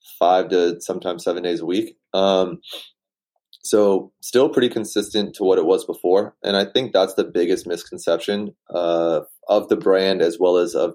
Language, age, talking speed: English, 20-39, 175 wpm